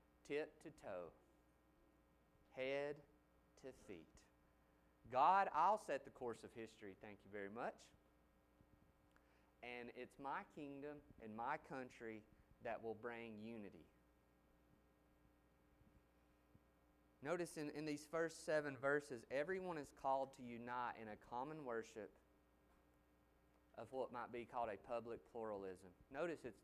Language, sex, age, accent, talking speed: English, male, 30-49, American, 120 wpm